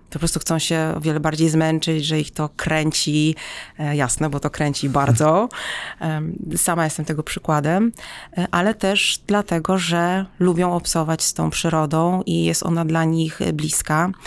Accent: native